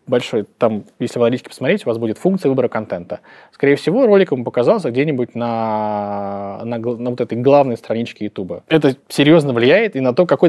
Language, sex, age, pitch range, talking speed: Russian, male, 20-39, 115-145 Hz, 190 wpm